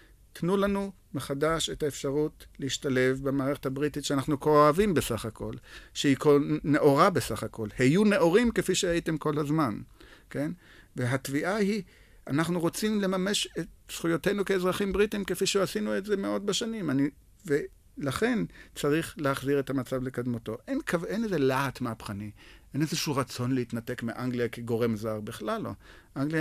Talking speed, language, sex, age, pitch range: 145 wpm, Hebrew, male, 50-69, 120-160 Hz